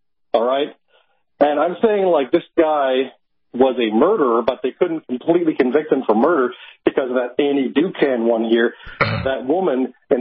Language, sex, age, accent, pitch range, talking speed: English, male, 40-59, American, 130-160 Hz, 170 wpm